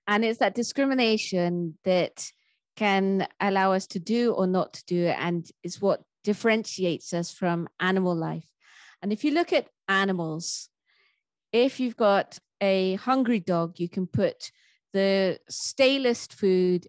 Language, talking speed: English, 140 wpm